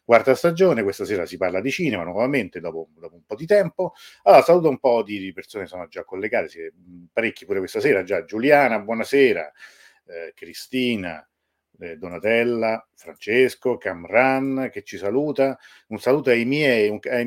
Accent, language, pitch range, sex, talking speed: native, Italian, 100-150 Hz, male, 165 wpm